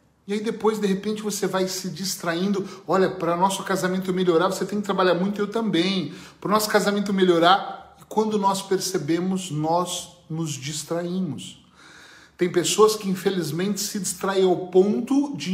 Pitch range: 175-210 Hz